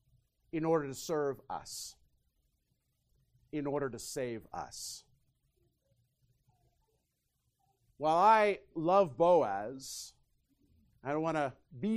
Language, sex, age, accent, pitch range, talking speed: English, male, 50-69, American, 125-190 Hz, 95 wpm